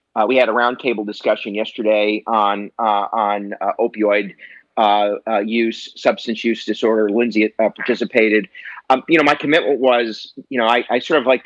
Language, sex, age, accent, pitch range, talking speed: English, male, 30-49, American, 110-140 Hz, 180 wpm